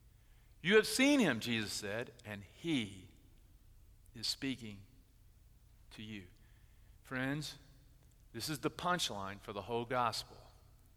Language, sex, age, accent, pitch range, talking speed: English, male, 50-69, American, 110-145 Hz, 115 wpm